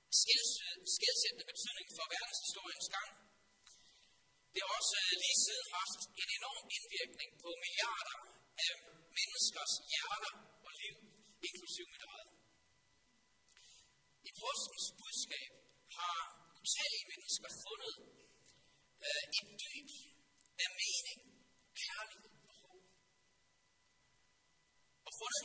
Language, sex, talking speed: Danish, male, 95 wpm